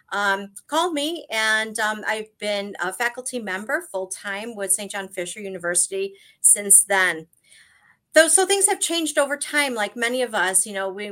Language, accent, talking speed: English, American, 175 wpm